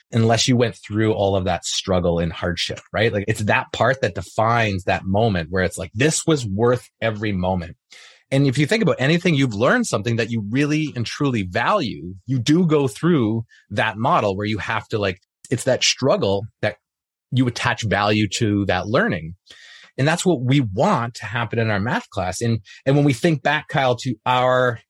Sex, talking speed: male, 200 wpm